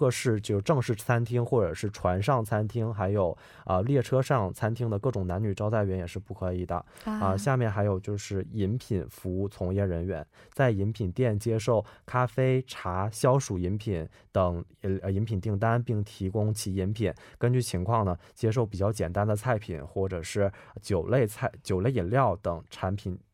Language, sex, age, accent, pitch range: Korean, male, 20-39, Chinese, 95-115 Hz